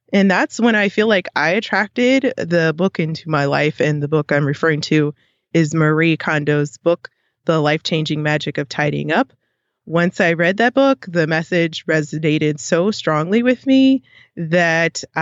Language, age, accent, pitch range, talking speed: English, 20-39, American, 150-190 Hz, 165 wpm